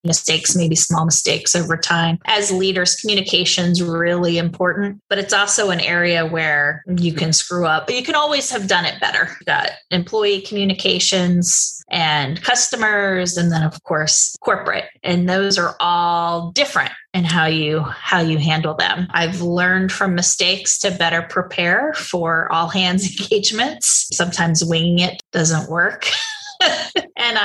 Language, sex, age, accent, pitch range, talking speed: English, female, 20-39, American, 165-195 Hz, 150 wpm